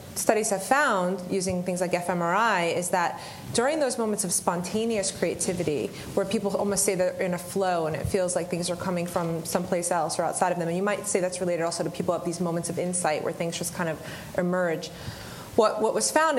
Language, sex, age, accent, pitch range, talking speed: English, female, 30-49, American, 175-200 Hz, 225 wpm